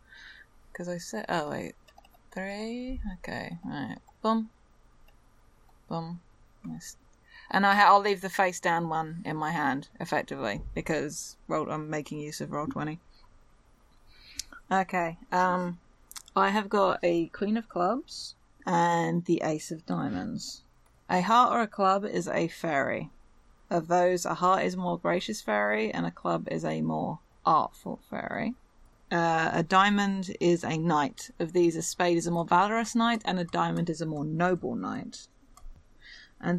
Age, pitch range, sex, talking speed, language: 20-39, 170-200 Hz, female, 160 wpm, English